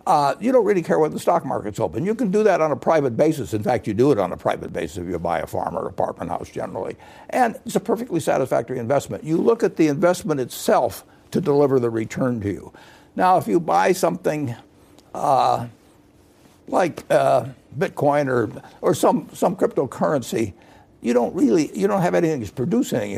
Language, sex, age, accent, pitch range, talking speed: English, male, 60-79, American, 130-195 Hz, 200 wpm